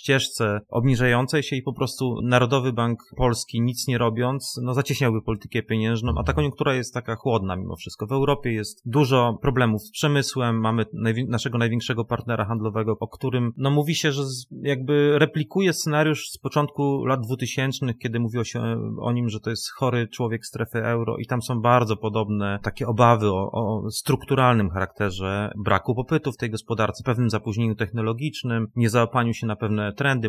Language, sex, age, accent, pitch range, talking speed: Polish, male, 30-49, native, 105-130 Hz, 180 wpm